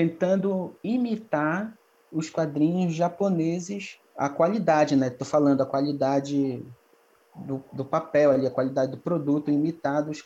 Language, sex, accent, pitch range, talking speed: Portuguese, male, Brazilian, 155-220 Hz, 125 wpm